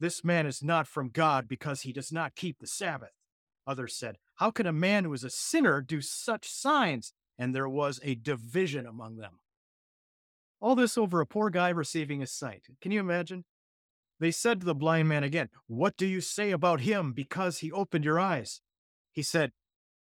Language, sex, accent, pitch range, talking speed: English, male, American, 135-190 Hz, 195 wpm